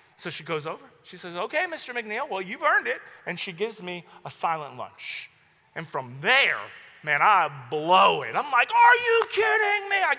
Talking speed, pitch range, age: 200 wpm, 235-370 Hz, 30-49